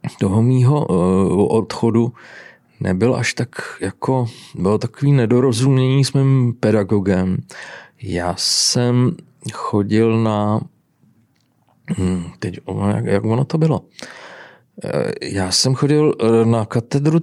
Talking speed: 100 wpm